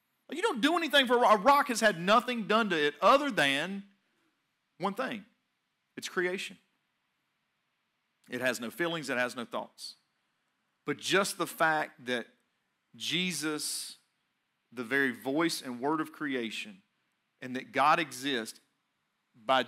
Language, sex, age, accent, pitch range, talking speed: English, male, 40-59, American, 130-180 Hz, 145 wpm